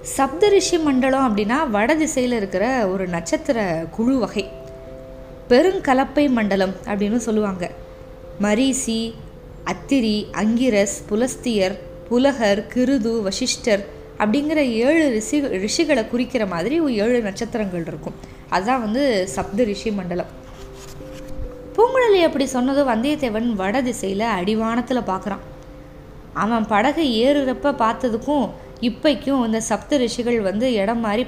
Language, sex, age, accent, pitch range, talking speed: Tamil, female, 20-39, native, 200-280 Hz, 100 wpm